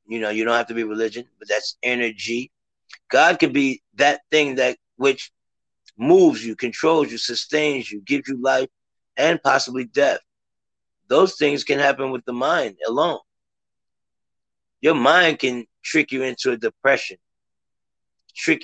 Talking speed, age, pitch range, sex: 150 wpm, 30-49, 120-155 Hz, male